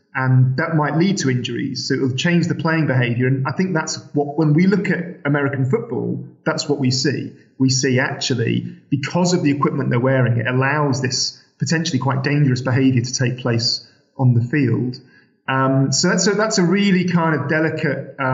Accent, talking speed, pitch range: British, 195 wpm, 130-160 Hz